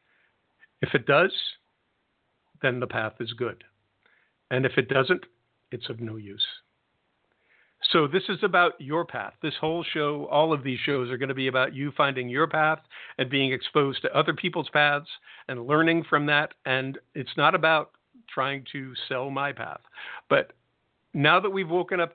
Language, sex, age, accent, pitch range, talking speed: English, male, 50-69, American, 135-165 Hz, 175 wpm